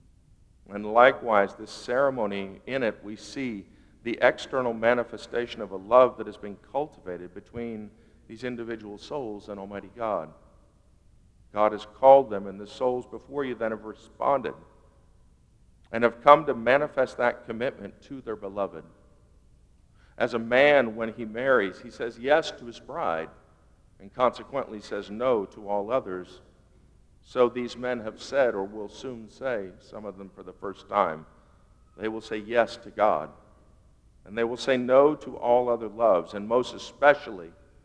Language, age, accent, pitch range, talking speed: English, 50-69, American, 100-120 Hz, 160 wpm